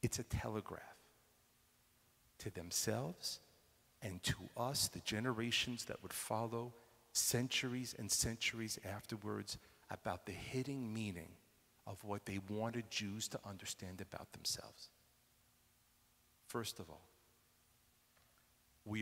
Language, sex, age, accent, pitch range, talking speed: English, male, 50-69, American, 100-130 Hz, 105 wpm